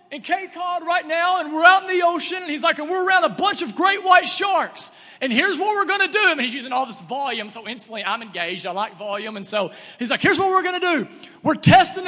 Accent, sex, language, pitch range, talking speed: American, male, English, 215-335 Hz, 285 wpm